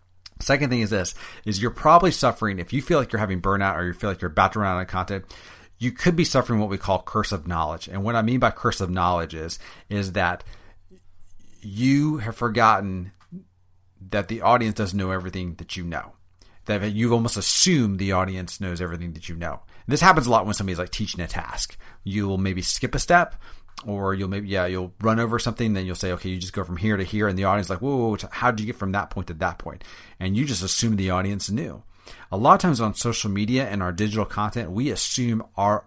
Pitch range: 95-115 Hz